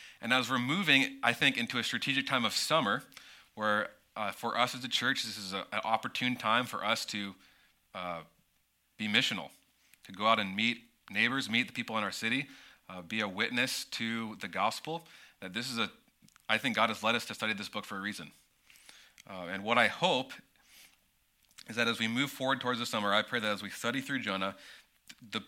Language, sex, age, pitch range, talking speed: English, male, 30-49, 100-125 Hz, 215 wpm